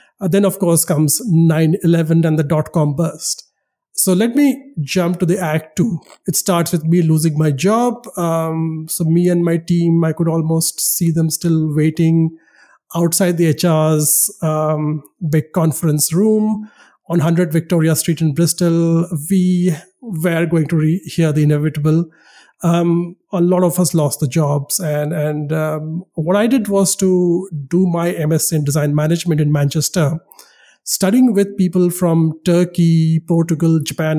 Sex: male